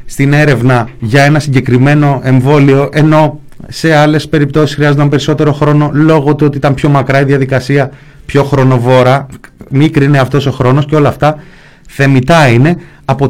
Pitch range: 125-155 Hz